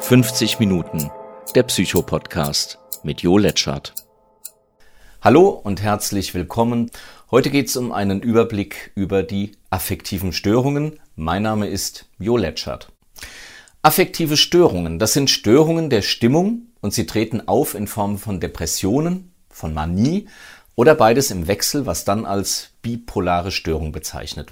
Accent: German